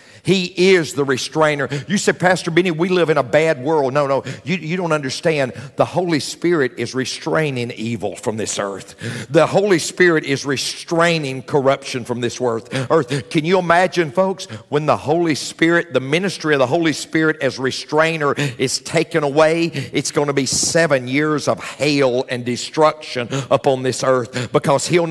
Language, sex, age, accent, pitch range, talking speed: English, male, 50-69, American, 135-175 Hz, 170 wpm